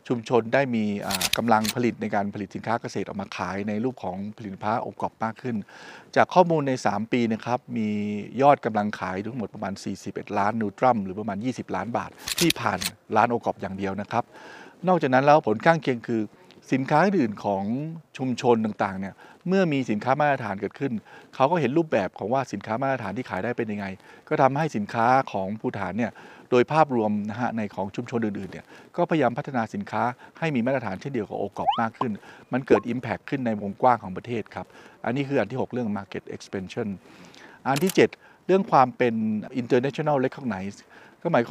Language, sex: Thai, male